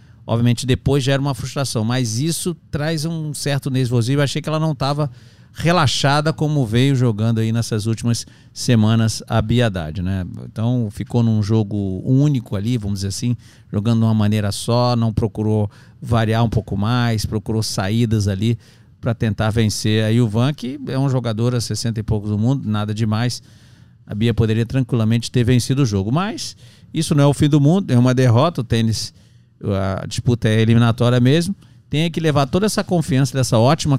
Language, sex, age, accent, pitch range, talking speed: Portuguese, male, 50-69, Brazilian, 110-145 Hz, 180 wpm